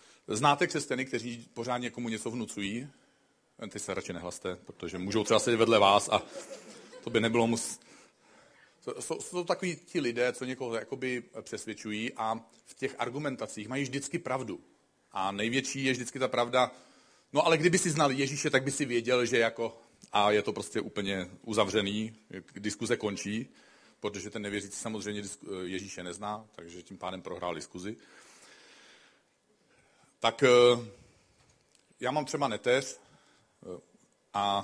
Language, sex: Czech, male